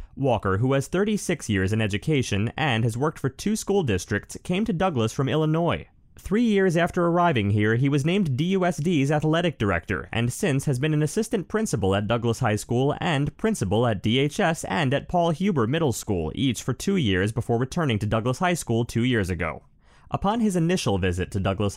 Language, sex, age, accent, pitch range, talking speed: English, male, 30-49, American, 105-170 Hz, 195 wpm